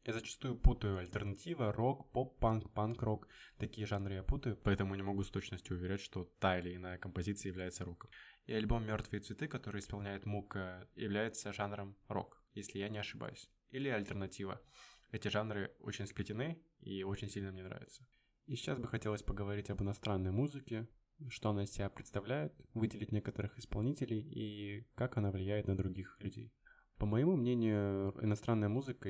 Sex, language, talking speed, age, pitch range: male, Russian, 160 wpm, 20-39, 100-115 Hz